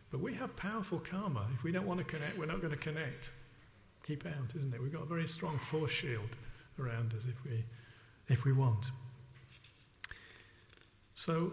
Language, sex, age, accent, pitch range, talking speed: English, male, 50-69, British, 120-145 Hz, 180 wpm